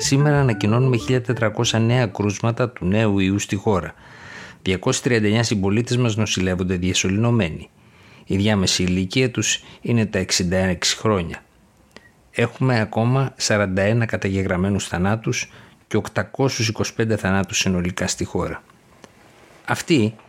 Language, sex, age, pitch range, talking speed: Greek, male, 50-69, 95-120 Hz, 100 wpm